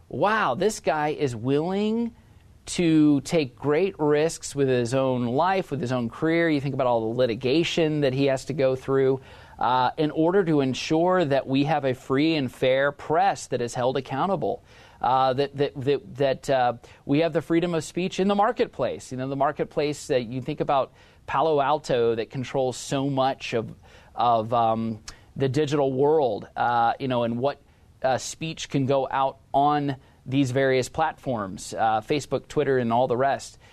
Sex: male